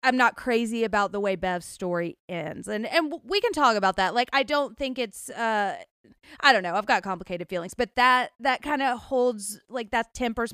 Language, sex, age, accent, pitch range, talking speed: English, female, 30-49, American, 180-235 Hz, 215 wpm